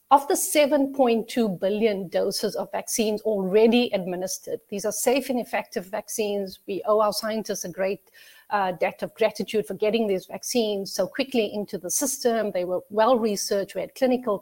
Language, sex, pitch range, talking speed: English, female, 195-240 Hz, 165 wpm